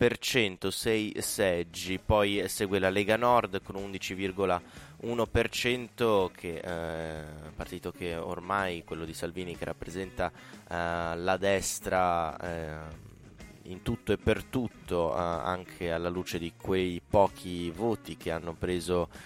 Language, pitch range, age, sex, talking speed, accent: Italian, 90-105 Hz, 20-39, male, 130 wpm, native